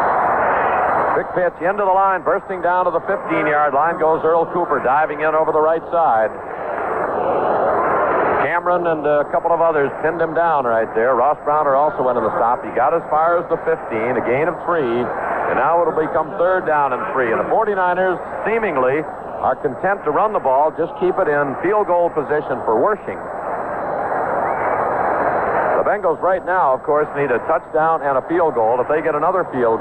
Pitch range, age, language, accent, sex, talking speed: 155-195 Hz, 60-79, English, American, male, 185 wpm